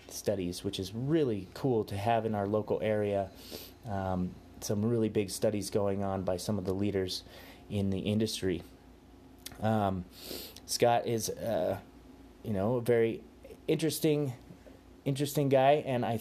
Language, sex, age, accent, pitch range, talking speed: English, male, 30-49, American, 95-120 Hz, 145 wpm